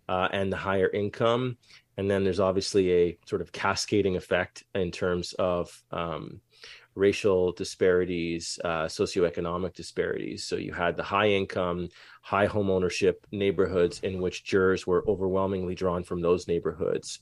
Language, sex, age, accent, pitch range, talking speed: English, male, 30-49, American, 90-105 Hz, 145 wpm